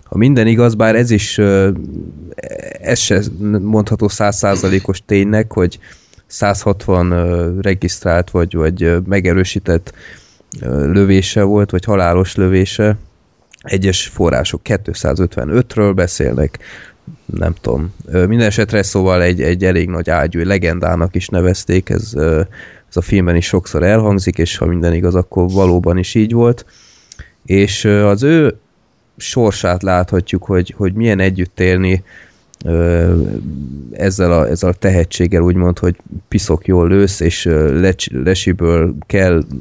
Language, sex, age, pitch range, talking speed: Hungarian, male, 20-39, 85-100 Hz, 120 wpm